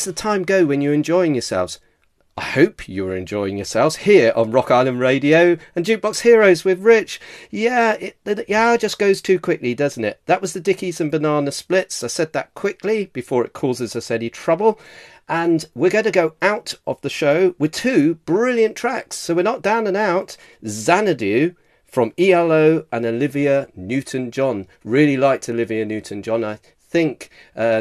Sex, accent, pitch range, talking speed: male, British, 125-185 Hz, 175 wpm